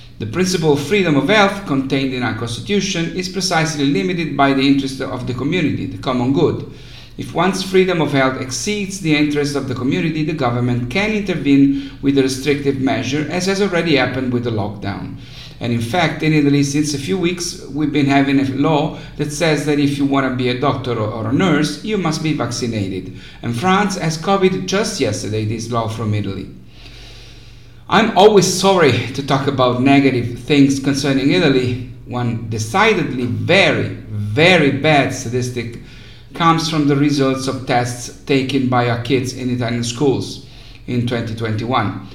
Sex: male